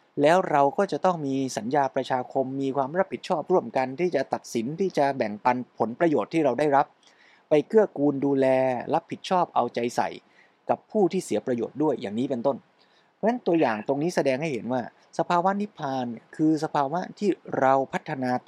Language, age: Thai, 20-39